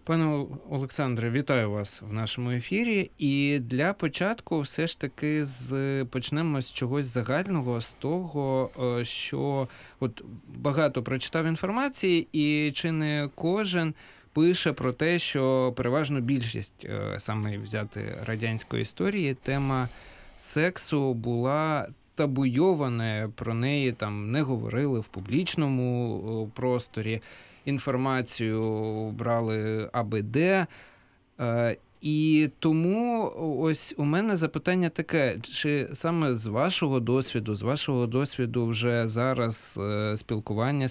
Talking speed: 105 wpm